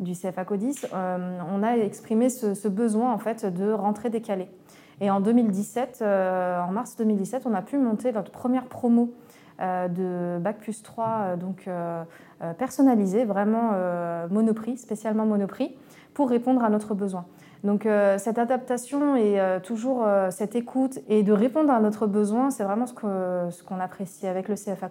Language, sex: French, female